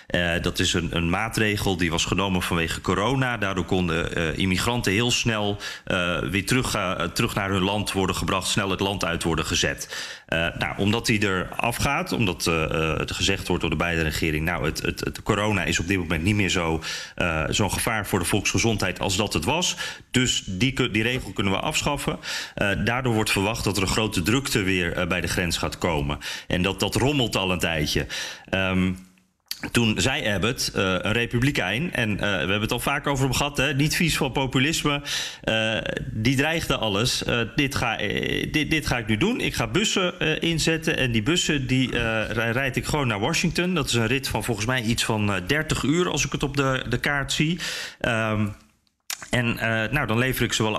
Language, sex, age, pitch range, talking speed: Dutch, male, 30-49, 95-130 Hz, 200 wpm